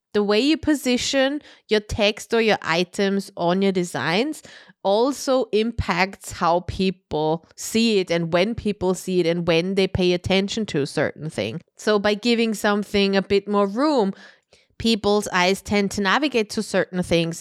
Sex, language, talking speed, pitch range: female, English, 165 wpm, 170-210 Hz